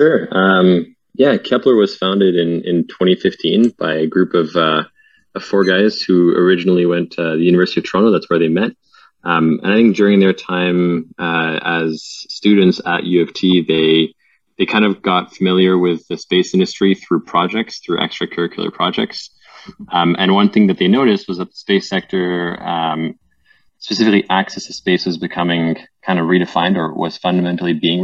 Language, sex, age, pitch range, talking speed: English, male, 20-39, 85-95 Hz, 180 wpm